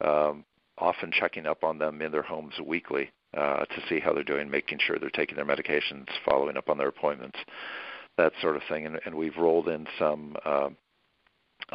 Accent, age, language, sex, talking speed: American, 60-79, English, male, 195 wpm